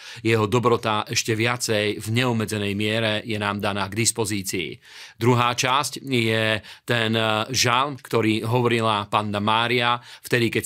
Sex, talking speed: male, 130 wpm